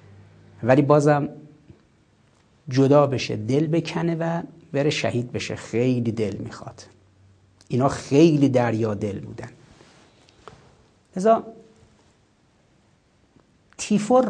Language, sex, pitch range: Persian, male, 115-150 Hz